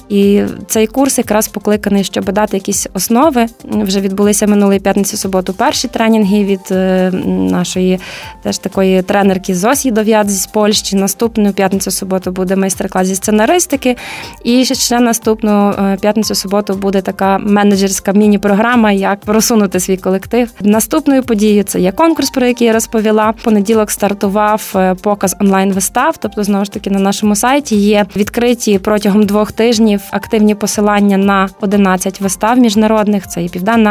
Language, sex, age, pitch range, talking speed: Ukrainian, female, 20-39, 195-225 Hz, 140 wpm